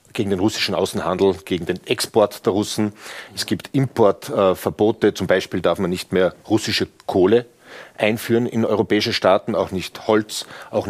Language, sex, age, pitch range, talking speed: German, male, 40-59, 95-115 Hz, 160 wpm